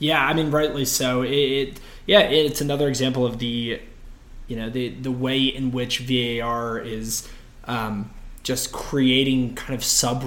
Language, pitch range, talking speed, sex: English, 115-135 Hz, 165 wpm, male